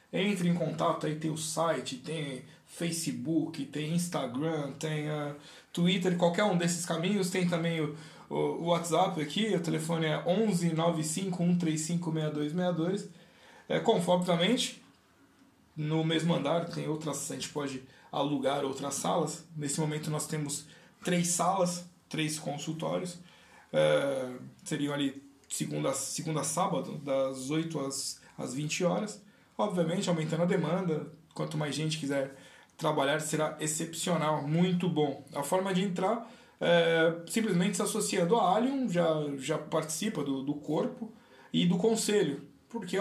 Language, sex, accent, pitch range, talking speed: Portuguese, male, Brazilian, 150-185 Hz, 135 wpm